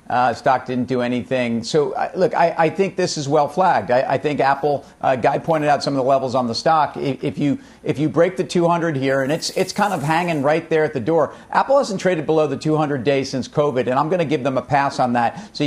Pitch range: 135-155 Hz